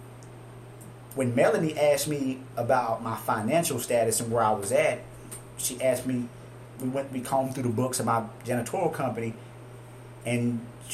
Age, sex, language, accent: 30-49, male, English, American